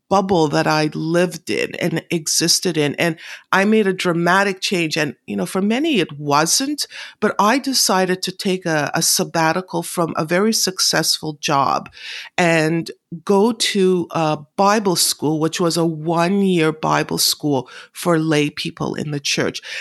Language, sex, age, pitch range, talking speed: English, female, 50-69, 160-195 Hz, 160 wpm